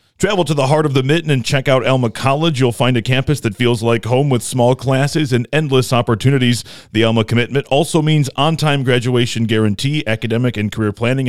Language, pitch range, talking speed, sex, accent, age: English, 120-140 Hz, 200 wpm, male, American, 30-49